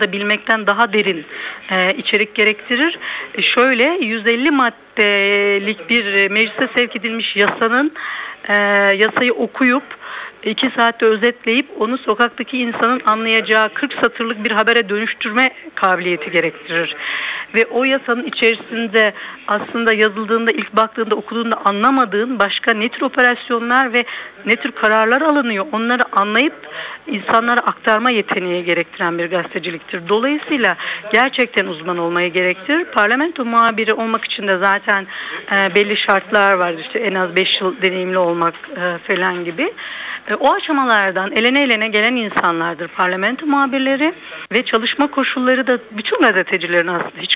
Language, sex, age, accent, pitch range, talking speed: Turkish, female, 60-79, native, 200-245 Hz, 120 wpm